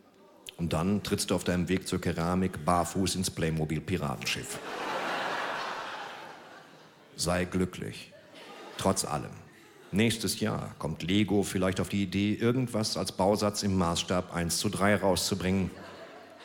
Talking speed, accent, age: 120 wpm, German, 50-69